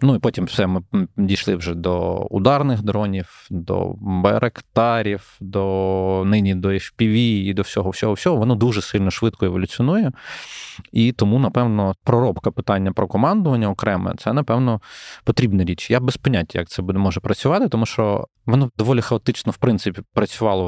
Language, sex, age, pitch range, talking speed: Ukrainian, male, 20-39, 95-115 Hz, 150 wpm